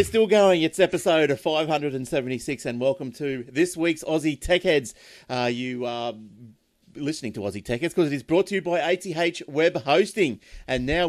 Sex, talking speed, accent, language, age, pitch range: male, 180 wpm, Australian, English, 30-49, 120-155 Hz